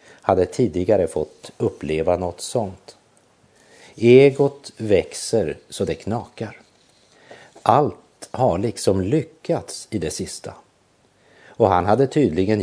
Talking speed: 105 wpm